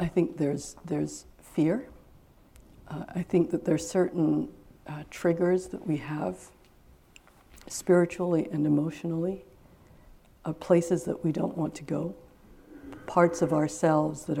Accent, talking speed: American, 130 wpm